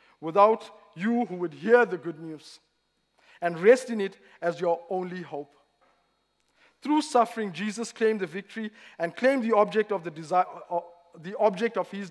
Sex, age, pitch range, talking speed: male, 50-69, 165-215 Hz, 170 wpm